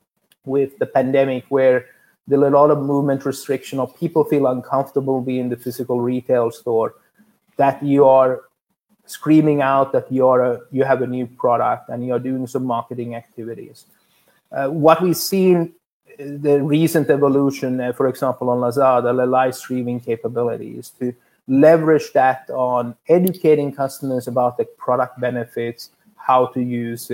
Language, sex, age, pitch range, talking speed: English, male, 30-49, 125-145 Hz, 155 wpm